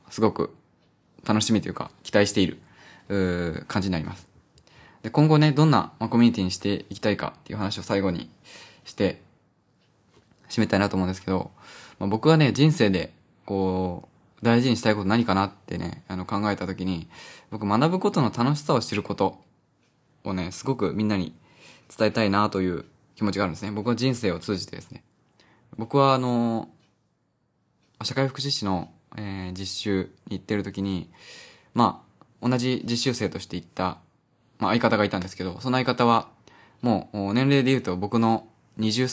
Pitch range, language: 95-125 Hz, Japanese